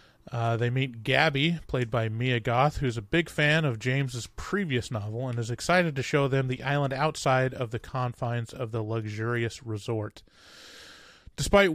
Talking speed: 170 wpm